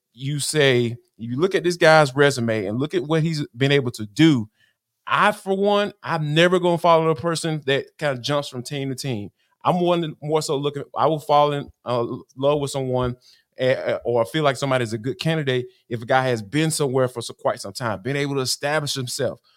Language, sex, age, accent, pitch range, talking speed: English, male, 20-39, American, 130-165 Hz, 220 wpm